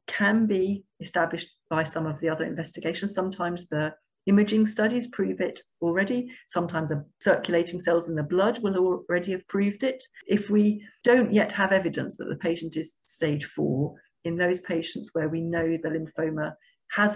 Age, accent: 40-59, British